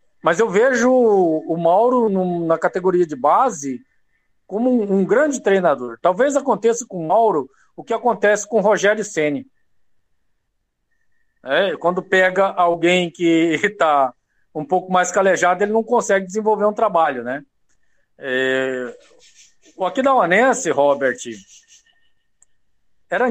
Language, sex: Portuguese, male